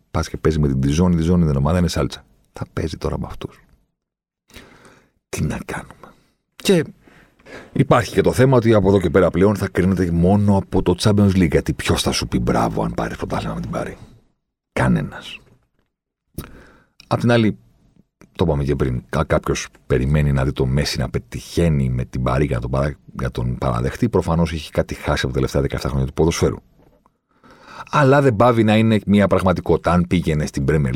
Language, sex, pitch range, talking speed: Greek, male, 70-95 Hz, 185 wpm